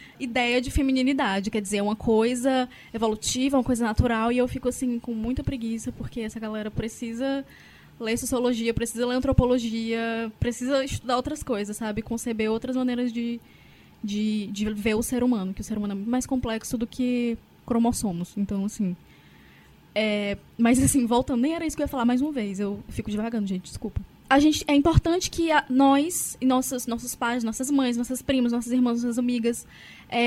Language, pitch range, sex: Portuguese, 225-275 Hz, female